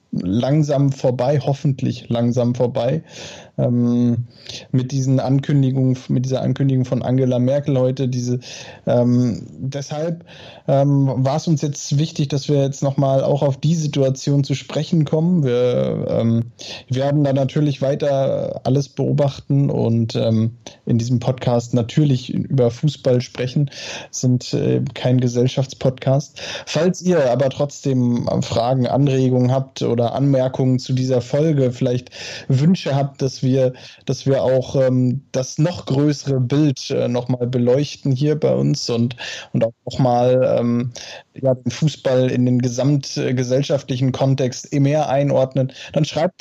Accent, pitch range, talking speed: German, 125-145 Hz, 135 wpm